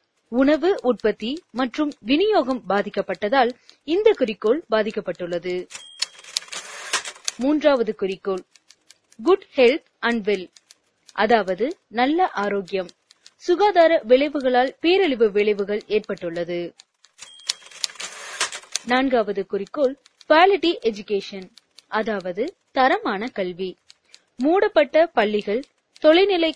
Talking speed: 70 wpm